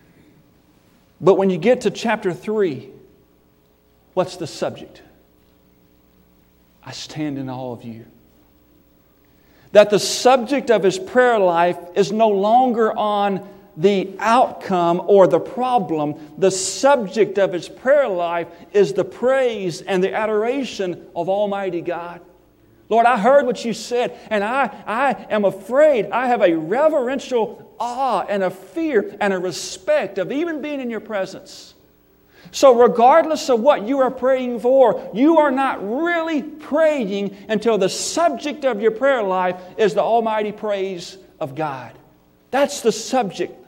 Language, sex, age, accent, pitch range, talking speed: English, male, 40-59, American, 175-240 Hz, 145 wpm